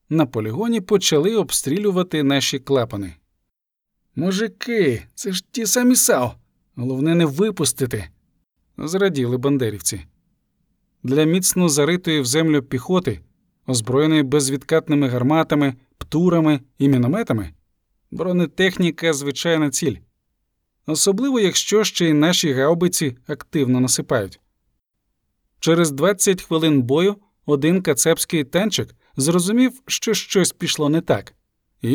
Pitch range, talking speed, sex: 135-185 Hz, 105 wpm, male